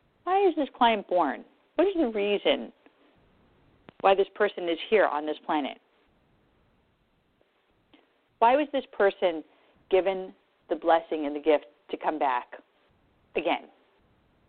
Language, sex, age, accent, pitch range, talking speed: English, female, 40-59, American, 160-200 Hz, 130 wpm